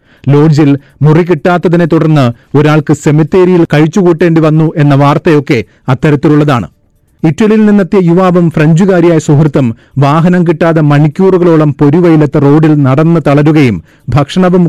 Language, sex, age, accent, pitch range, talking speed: Malayalam, male, 30-49, native, 145-165 Hz, 100 wpm